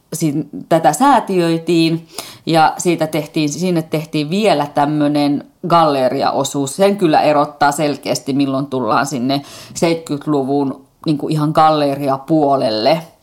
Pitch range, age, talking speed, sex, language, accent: 145-180 Hz, 30-49, 85 wpm, female, Finnish, native